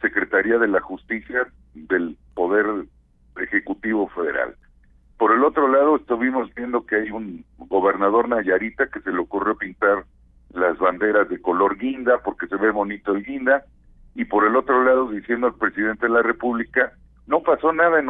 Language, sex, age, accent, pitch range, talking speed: Spanish, male, 50-69, Mexican, 100-130 Hz, 165 wpm